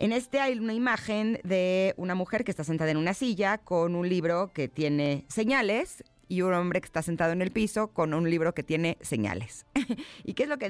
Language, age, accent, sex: Spanish, 30-49, Mexican, female